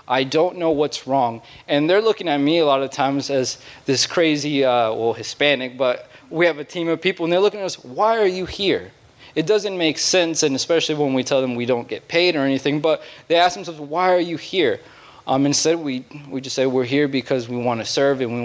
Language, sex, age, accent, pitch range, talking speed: English, male, 20-39, American, 125-160 Hz, 245 wpm